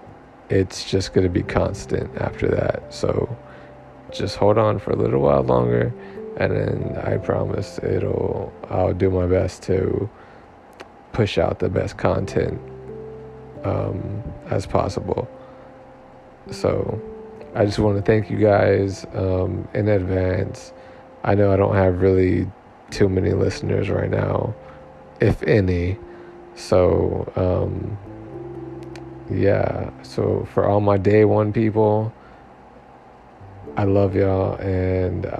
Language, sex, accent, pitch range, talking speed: English, male, American, 90-105 Hz, 125 wpm